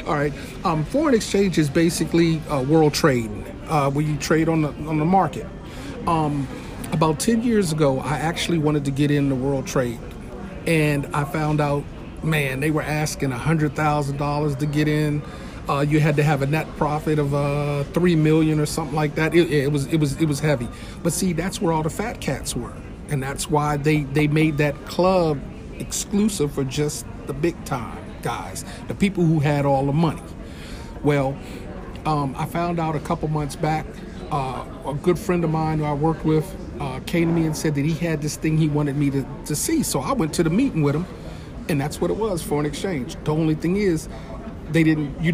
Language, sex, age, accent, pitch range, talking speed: English, male, 40-59, American, 145-165 Hz, 210 wpm